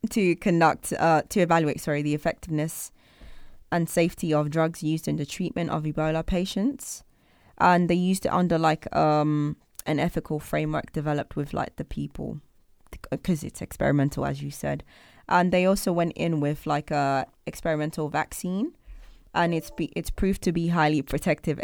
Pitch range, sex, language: 140-165 Hz, female, English